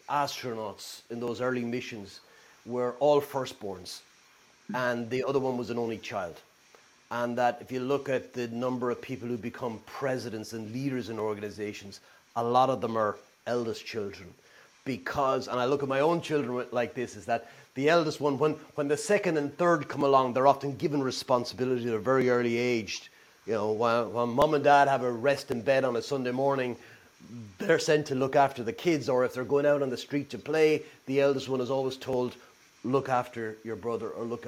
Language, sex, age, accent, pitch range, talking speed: English, male, 30-49, Irish, 115-140 Hz, 200 wpm